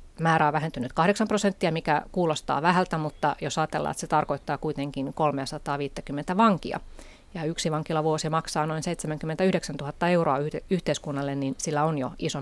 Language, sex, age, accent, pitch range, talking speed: Finnish, female, 30-49, native, 145-175 Hz, 150 wpm